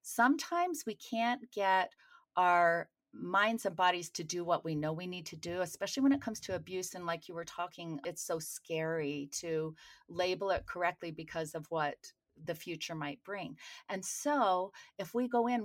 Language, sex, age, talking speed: English, female, 30-49, 185 wpm